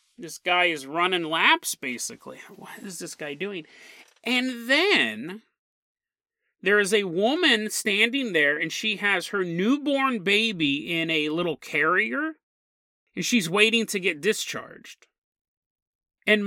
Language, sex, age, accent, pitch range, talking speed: English, male, 30-49, American, 160-230 Hz, 130 wpm